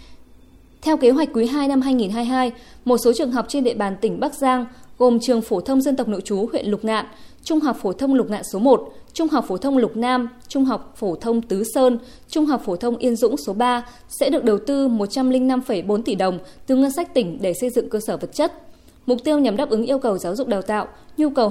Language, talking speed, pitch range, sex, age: Vietnamese, 245 wpm, 210-270 Hz, female, 20-39